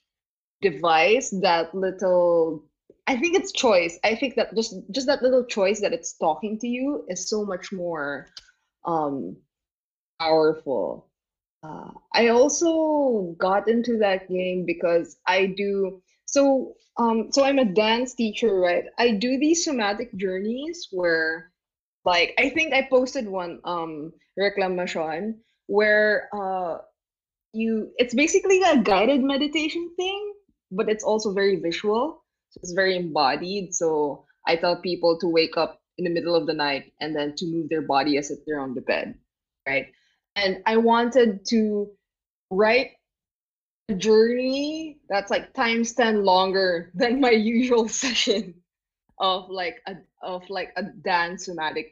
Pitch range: 175-245 Hz